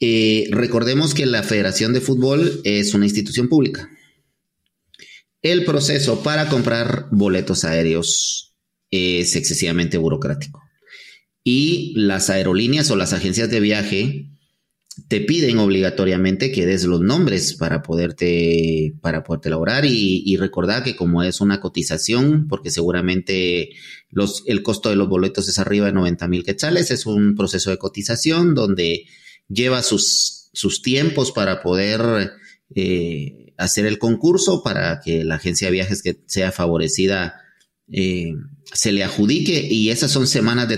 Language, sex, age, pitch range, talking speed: English, male, 30-49, 95-130 Hz, 140 wpm